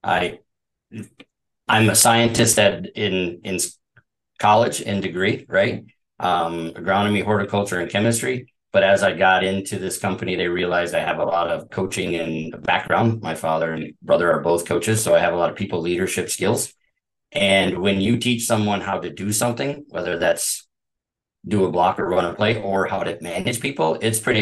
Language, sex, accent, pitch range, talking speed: English, male, American, 85-110 Hz, 180 wpm